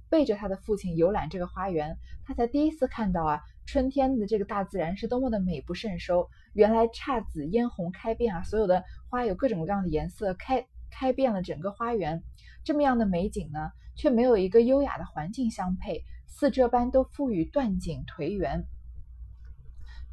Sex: female